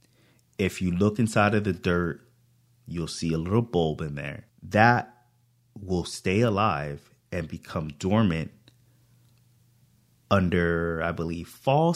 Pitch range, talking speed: 95-120 Hz, 125 wpm